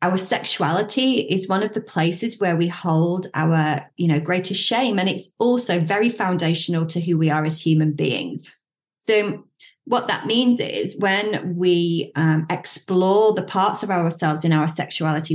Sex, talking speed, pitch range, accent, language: female, 170 wpm, 160-195 Hz, British, English